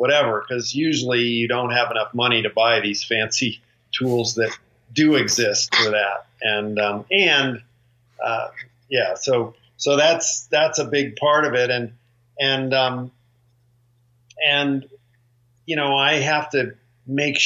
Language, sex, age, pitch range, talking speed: English, male, 50-69, 120-140 Hz, 145 wpm